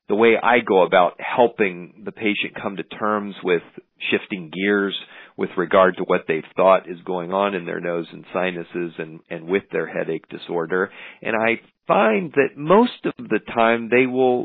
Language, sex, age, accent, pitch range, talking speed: English, male, 40-59, American, 100-130 Hz, 185 wpm